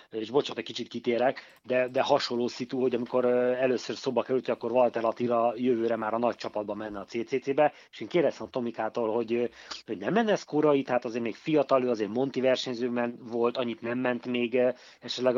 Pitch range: 125-150 Hz